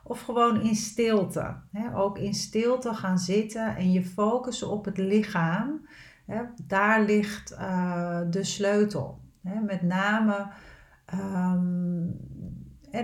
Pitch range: 180-210 Hz